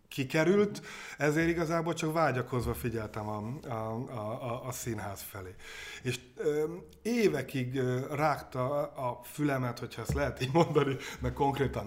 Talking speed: 125 wpm